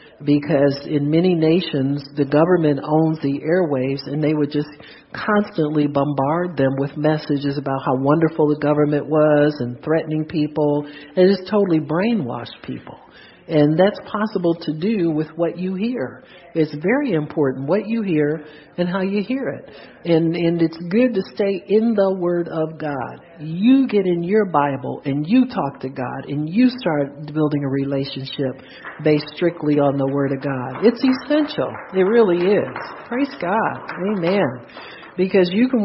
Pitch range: 145-190 Hz